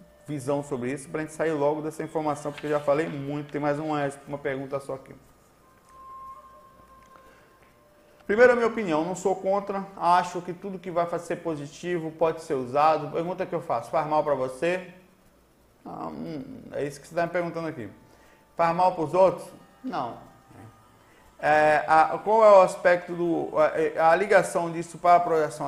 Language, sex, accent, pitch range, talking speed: Portuguese, male, Brazilian, 145-180 Hz, 175 wpm